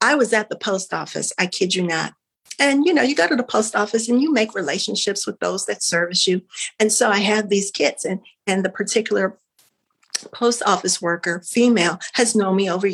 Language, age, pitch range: English, 50-69, 190-255 Hz